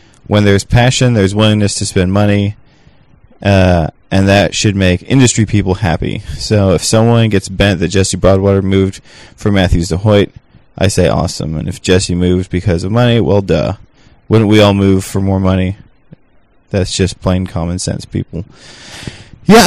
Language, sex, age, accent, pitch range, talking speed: English, male, 20-39, American, 95-115 Hz, 170 wpm